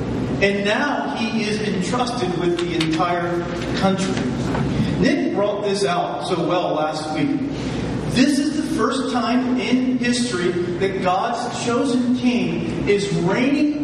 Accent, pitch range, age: American, 175-245 Hz, 40-59